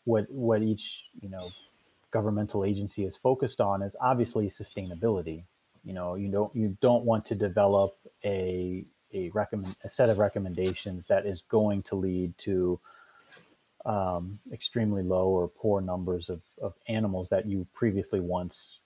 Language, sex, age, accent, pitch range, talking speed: English, male, 30-49, American, 90-105 Hz, 155 wpm